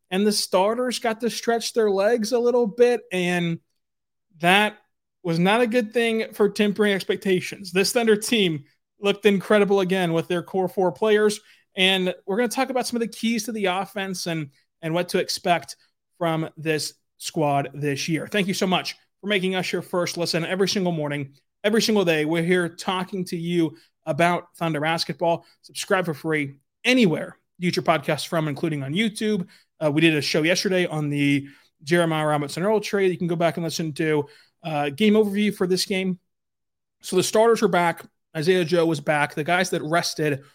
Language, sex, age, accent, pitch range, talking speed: English, male, 30-49, American, 160-205 Hz, 190 wpm